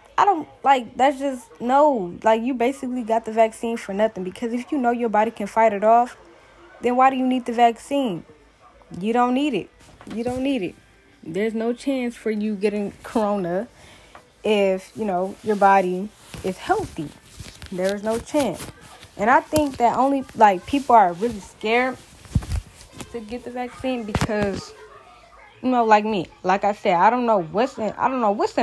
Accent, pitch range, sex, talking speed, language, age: American, 195-240 Hz, female, 175 wpm, English, 10-29